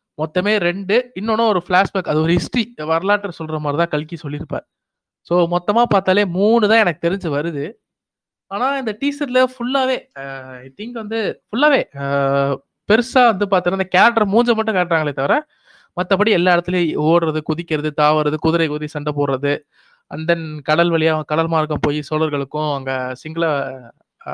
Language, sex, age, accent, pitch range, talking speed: Tamil, male, 20-39, native, 155-210 Hz, 145 wpm